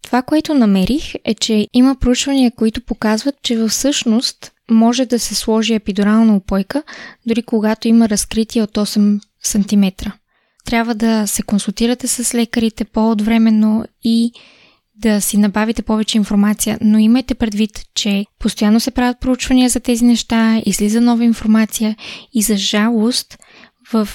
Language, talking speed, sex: Bulgarian, 140 wpm, female